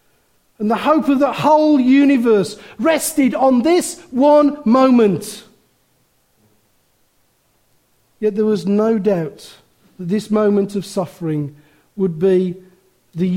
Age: 50-69